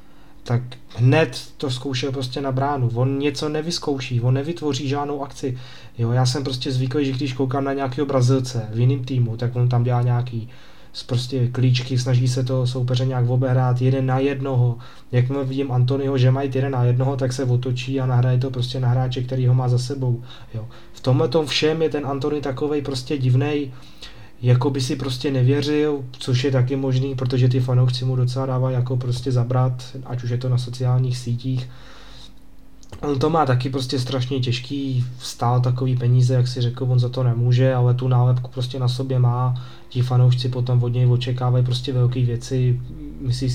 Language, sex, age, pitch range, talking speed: Slovak, male, 20-39, 125-135 Hz, 185 wpm